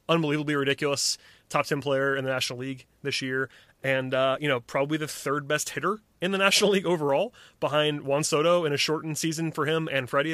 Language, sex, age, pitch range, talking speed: English, male, 30-49, 135-165 Hz, 210 wpm